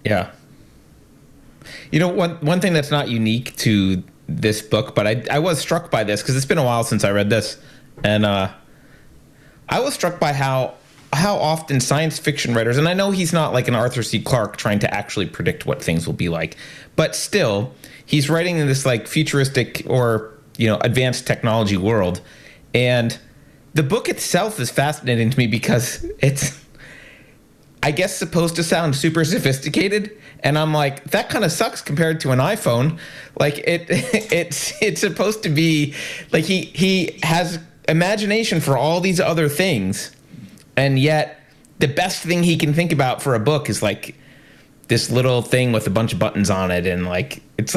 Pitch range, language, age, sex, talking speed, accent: 110-160 Hz, English, 30-49, male, 180 wpm, American